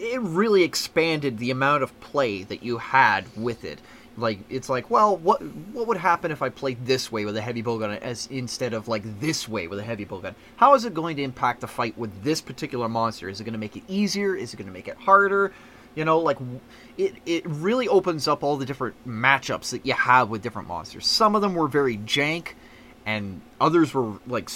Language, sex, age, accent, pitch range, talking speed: English, male, 30-49, American, 115-140 Hz, 220 wpm